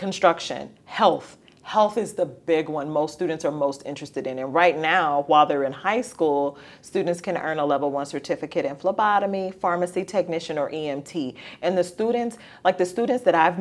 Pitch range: 155-185 Hz